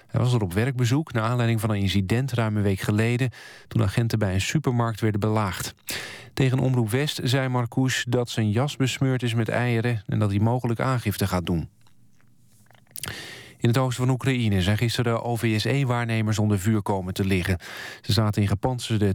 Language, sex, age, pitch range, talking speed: Dutch, male, 40-59, 105-130 Hz, 180 wpm